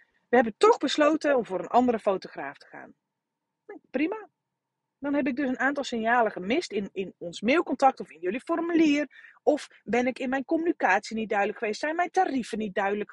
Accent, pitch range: Dutch, 220-300 Hz